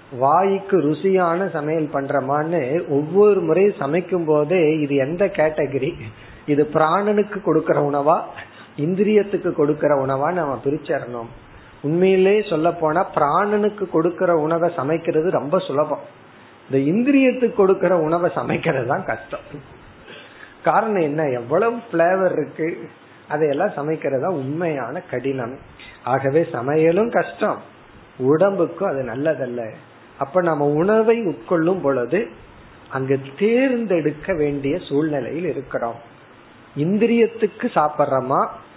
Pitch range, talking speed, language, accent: 140-185 Hz, 100 wpm, Tamil, native